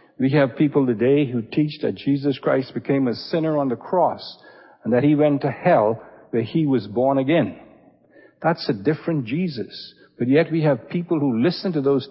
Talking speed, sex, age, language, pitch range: 195 wpm, male, 60-79, English, 130-165 Hz